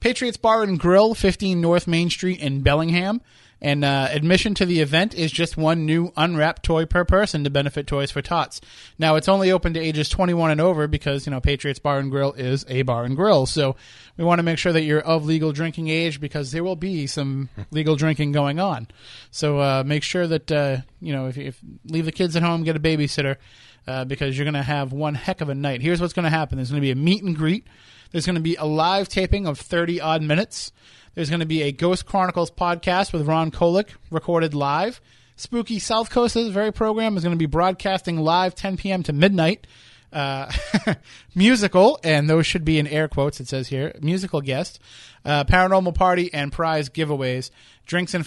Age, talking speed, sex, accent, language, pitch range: 30-49, 215 wpm, male, American, English, 140-180 Hz